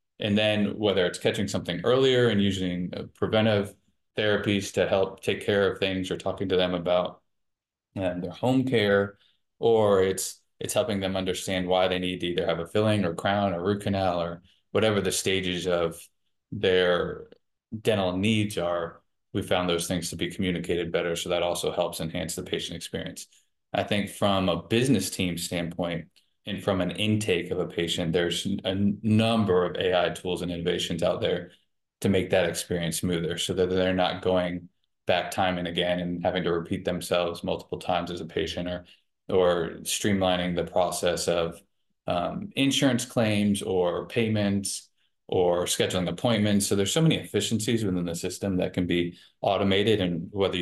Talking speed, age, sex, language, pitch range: 170 wpm, 20-39, male, English, 90-100 Hz